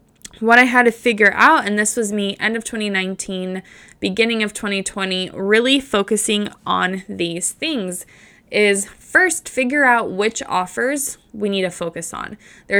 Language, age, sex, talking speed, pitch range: English, 20-39, female, 155 wpm, 185-220 Hz